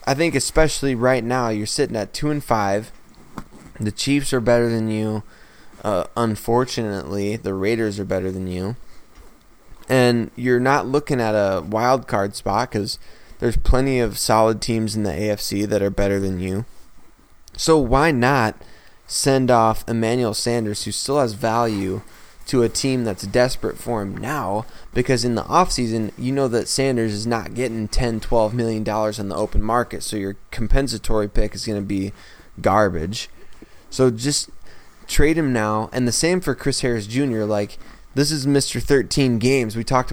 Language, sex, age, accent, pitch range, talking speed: English, male, 20-39, American, 105-125 Hz, 175 wpm